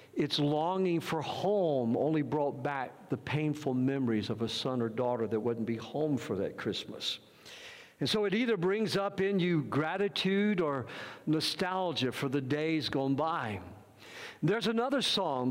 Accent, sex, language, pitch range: American, male, English, 145-200 Hz